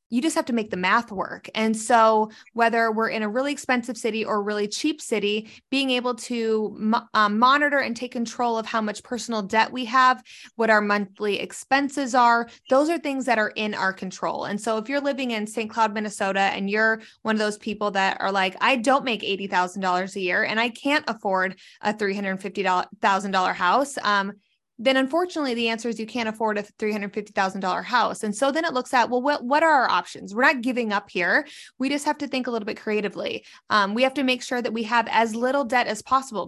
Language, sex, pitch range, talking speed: English, female, 210-250 Hz, 225 wpm